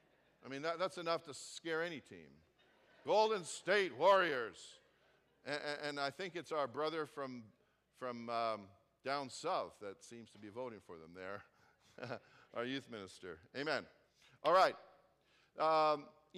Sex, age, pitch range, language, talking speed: male, 50-69, 145-190 Hz, English, 145 wpm